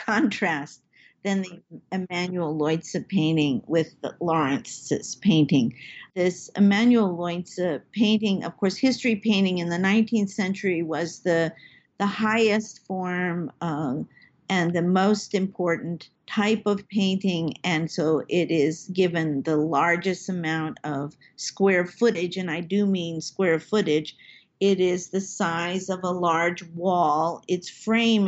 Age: 50-69